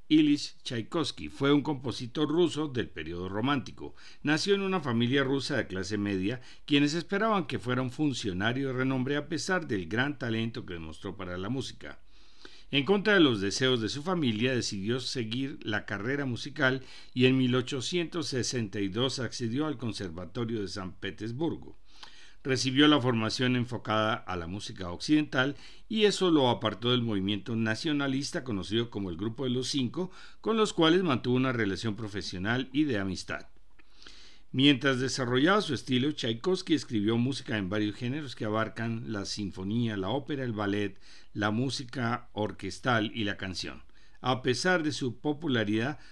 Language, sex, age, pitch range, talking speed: Spanish, male, 50-69, 105-145 Hz, 155 wpm